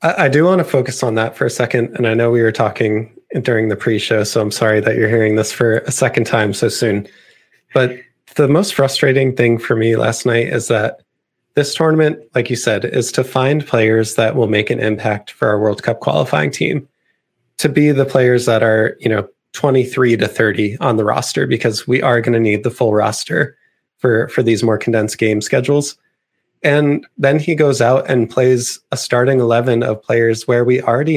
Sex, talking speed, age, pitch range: male, 210 wpm, 20-39, 110-140 Hz